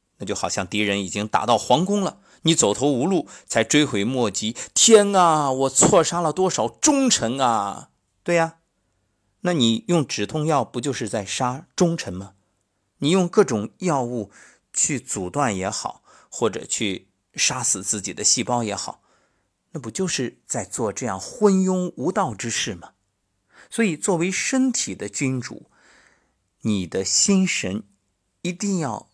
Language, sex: Chinese, male